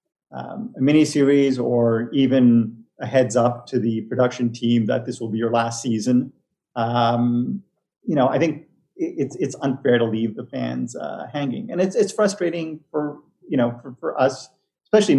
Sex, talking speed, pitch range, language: male, 175 wpm, 120-135 Hz, English